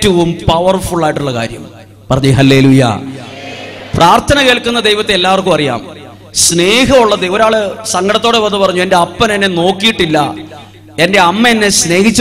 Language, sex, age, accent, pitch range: English, male, 30-49, Indian, 170-210 Hz